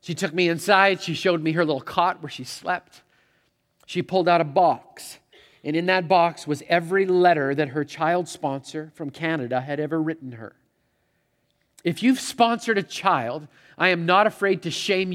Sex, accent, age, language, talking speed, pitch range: male, American, 40-59, English, 185 wpm, 140-175 Hz